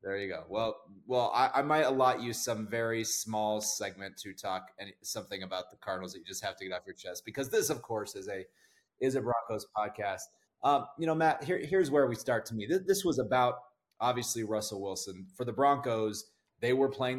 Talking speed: 215 wpm